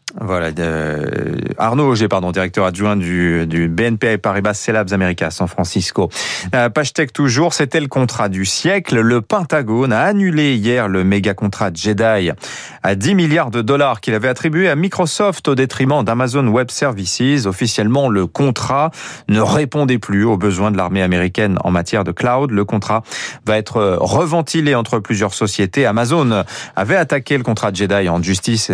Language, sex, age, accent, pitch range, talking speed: French, male, 30-49, French, 100-135 Hz, 165 wpm